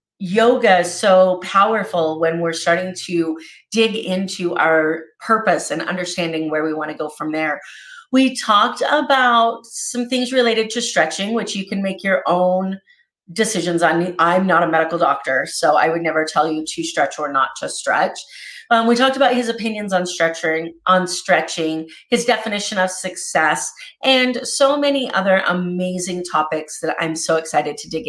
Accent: American